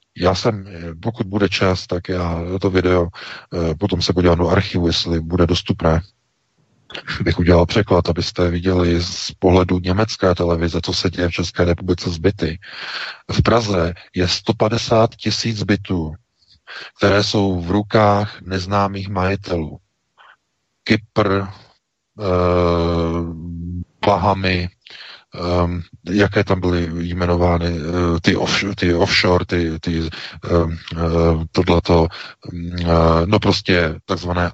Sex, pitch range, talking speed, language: male, 85-100 Hz, 120 wpm, Czech